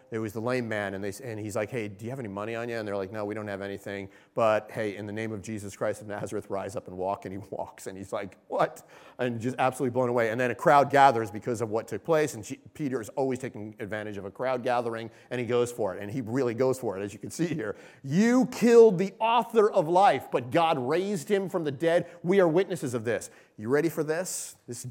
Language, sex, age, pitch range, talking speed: English, male, 40-59, 120-180 Hz, 265 wpm